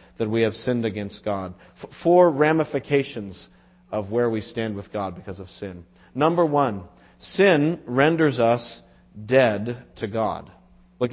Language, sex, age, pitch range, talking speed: English, male, 40-59, 100-140 Hz, 140 wpm